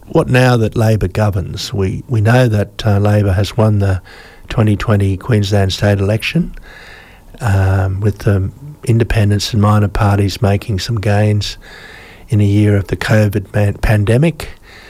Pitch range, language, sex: 100-115 Hz, English, male